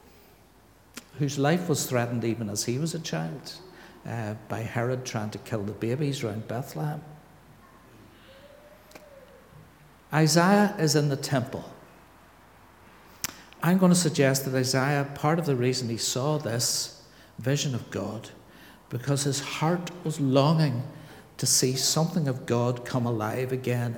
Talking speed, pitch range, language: 135 wpm, 115-150 Hz, English